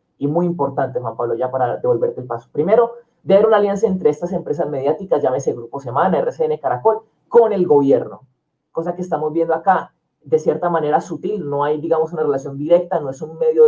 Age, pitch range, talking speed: 30-49, 150-195 Hz, 200 wpm